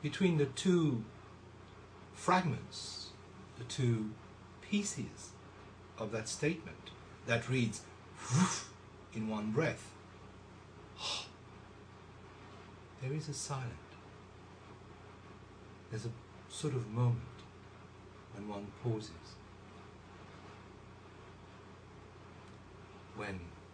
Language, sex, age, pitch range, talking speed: English, male, 60-79, 95-110 Hz, 75 wpm